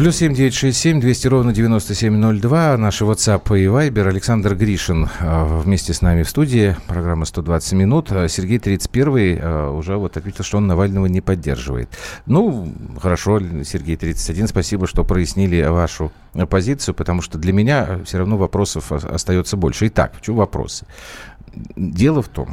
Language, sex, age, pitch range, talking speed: Russian, male, 40-59, 80-110 Hz, 140 wpm